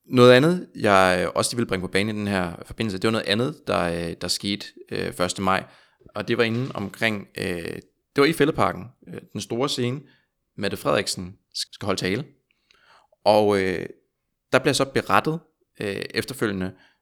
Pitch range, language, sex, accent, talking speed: 95-120 Hz, Danish, male, native, 155 wpm